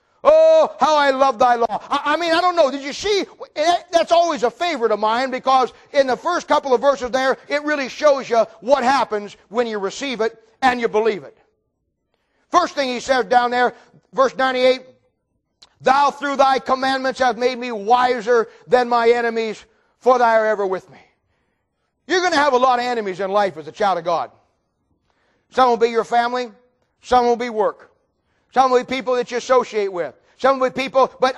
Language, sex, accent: English, male, American